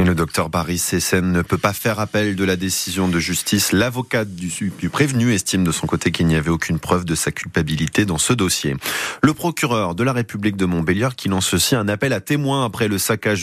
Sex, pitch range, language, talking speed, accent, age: male, 90-135 Hz, French, 225 wpm, French, 30-49